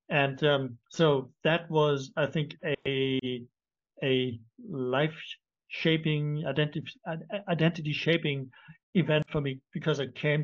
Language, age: English, 60-79